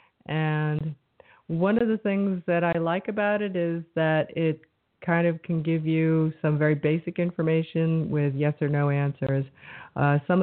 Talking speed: 165 wpm